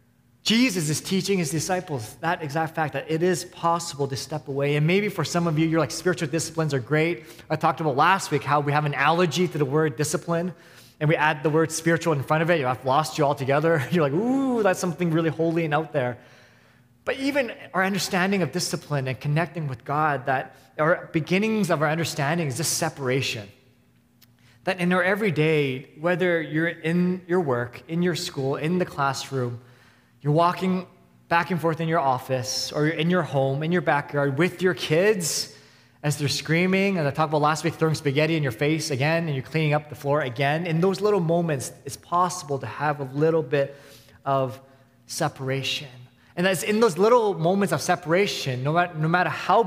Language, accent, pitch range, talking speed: English, American, 140-175 Hz, 205 wpm